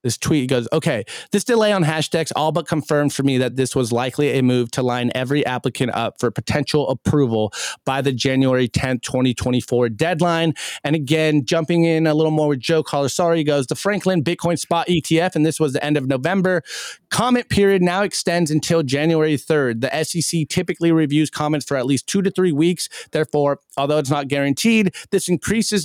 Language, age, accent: English, 30-49, American